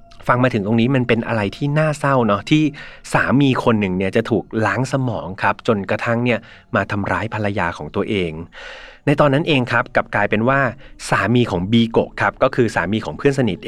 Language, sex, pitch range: Thai, male, 105-130 Hz